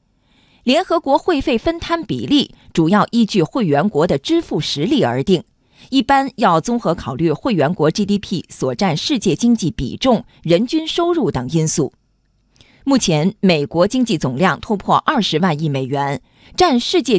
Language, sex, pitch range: Chinese, female, 175-270 Hz